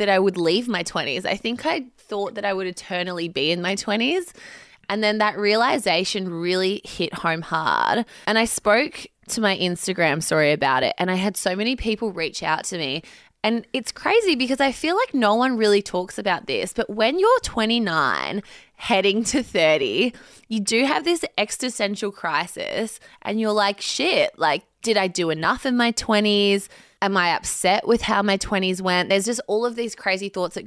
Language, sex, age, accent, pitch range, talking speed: English, female, 20-39, Australian, 185-230 Hz, 195 wpm